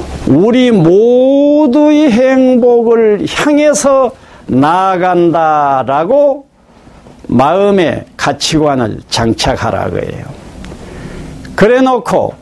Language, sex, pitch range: Korean, male, 145-225 Hz